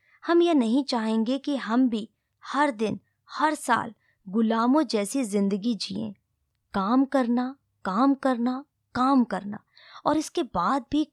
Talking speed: 135 wpm